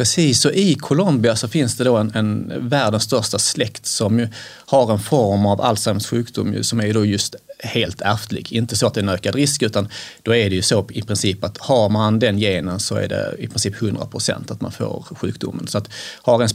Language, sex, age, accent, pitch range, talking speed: Swedish, male, 30-49, native, 105-130 Hz, 230 wpm